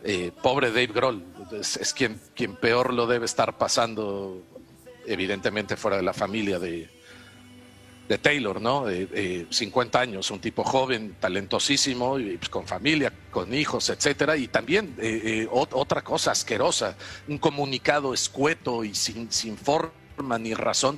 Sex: male